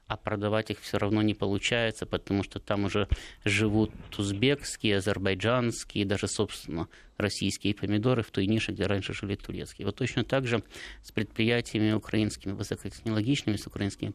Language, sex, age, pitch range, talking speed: Russian, male, 20-39, 100-135 Hz, 150 wpm